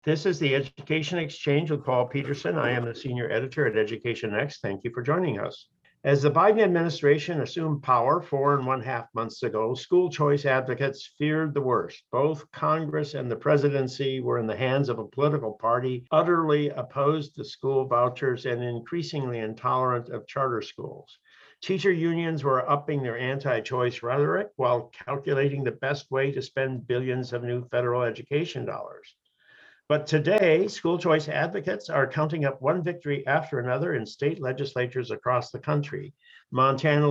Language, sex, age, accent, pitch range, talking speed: English, male, 50-69, American, 130-155 Hz, 165 wpm